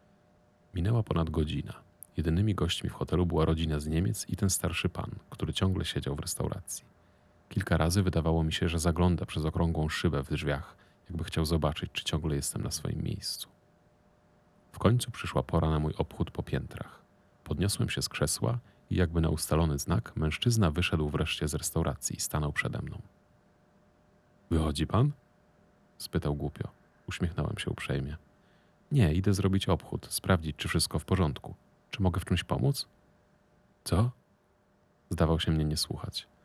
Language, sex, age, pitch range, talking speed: Polish, male, 40-59, 80-100 Hz, 155 wpm